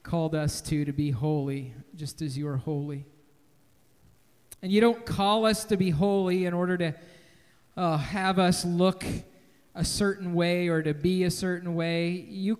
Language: English